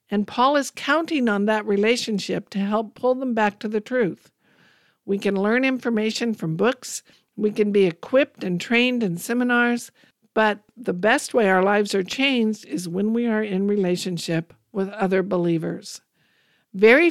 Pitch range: 195-240 Hz